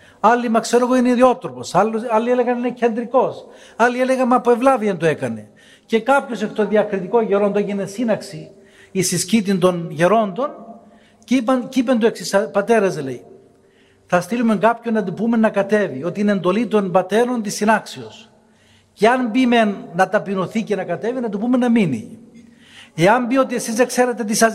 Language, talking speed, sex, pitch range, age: Greek, 180 wpm, male, 185-235 Hz, 60-79